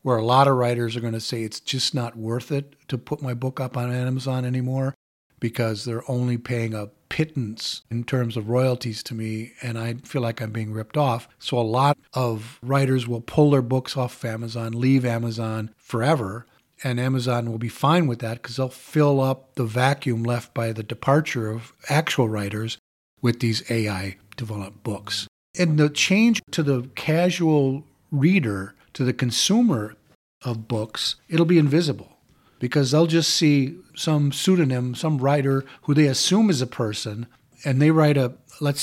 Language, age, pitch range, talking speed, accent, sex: English, 40-59, 115-145 Hz, 175 wpm, American, male